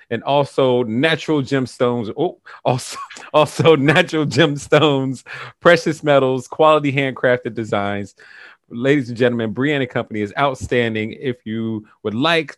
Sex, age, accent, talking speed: male, 30-49, American, 125 wpm